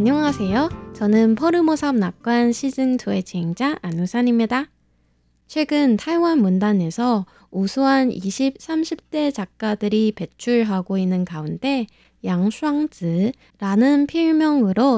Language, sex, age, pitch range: Korean, female, 20-39, 195-270 Hz